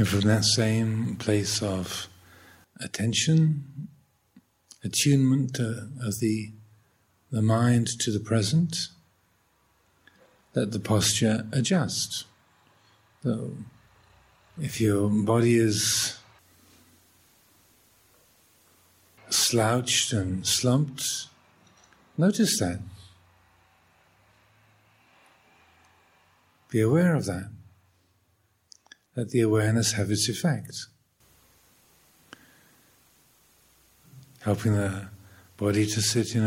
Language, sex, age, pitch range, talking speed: English, male, 50-69, 95-120 Hz, 70 wpm